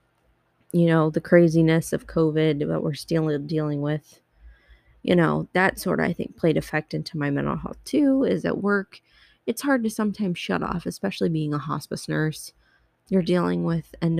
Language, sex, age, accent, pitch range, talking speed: English, female, 20-39, American, 150-180 Hz, 180 wpm